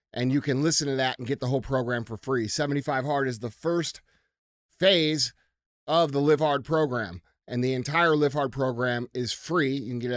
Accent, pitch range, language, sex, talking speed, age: American, 120-150 Hz, English, male, 220 wpm, 30-49